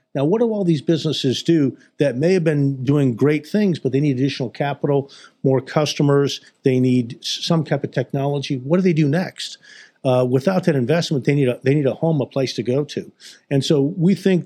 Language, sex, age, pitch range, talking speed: English, male, 50-69, 130-160 Hz, 215 wpm